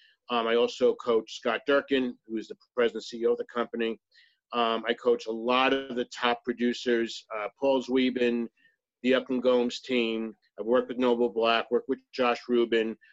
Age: 50-69